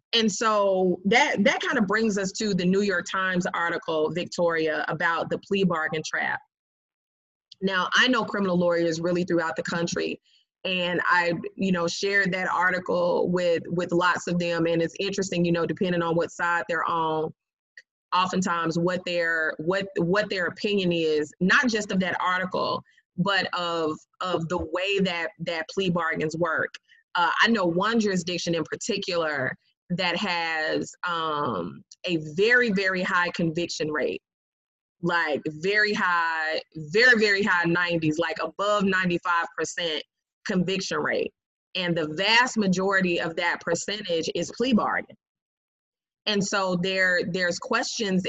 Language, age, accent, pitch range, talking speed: English, 20-39, American, 170-205 Hz, 145 wpm